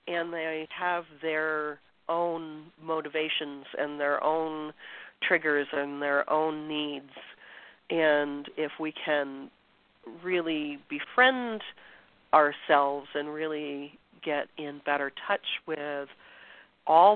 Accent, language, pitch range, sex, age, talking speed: American, English, 145-170 Hz, female, 40-59, 100 wpm